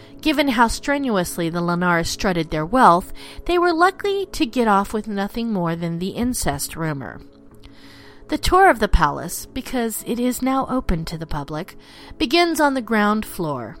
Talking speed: 170 wpm